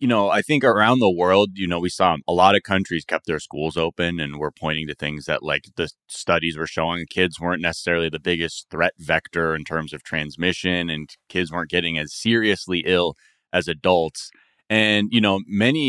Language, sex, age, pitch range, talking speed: English, male, 30-49, 80-105 Hz, 205 wpm